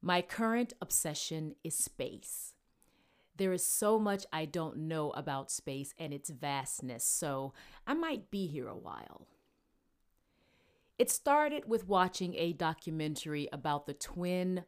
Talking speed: 135 wpm